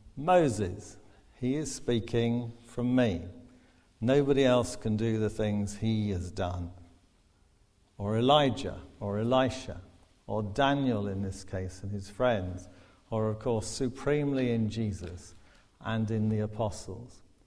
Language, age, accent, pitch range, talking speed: English, 50-69, British, 100-125 Hz, 125 wpm